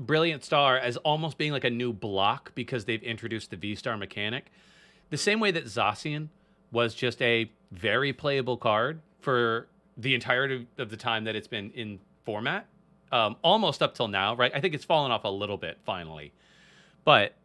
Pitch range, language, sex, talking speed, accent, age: 120-180 Hz, English, male, 180 wpm, American, 30-49